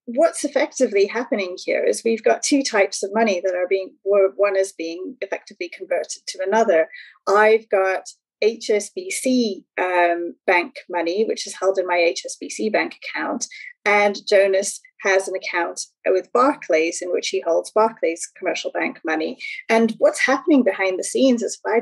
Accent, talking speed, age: British, 160 wpm, 30-49